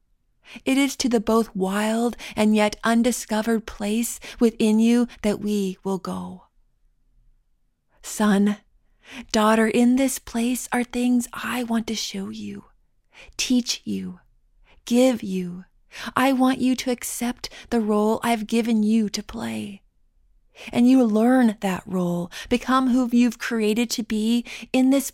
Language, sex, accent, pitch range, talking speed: English, female, American, 210-245 Hz, 135 wpm